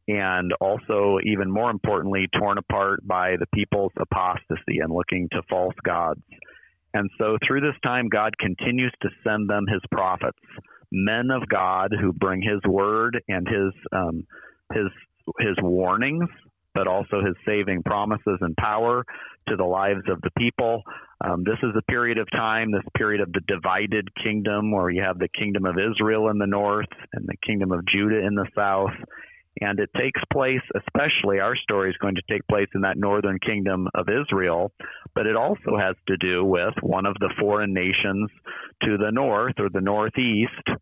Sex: male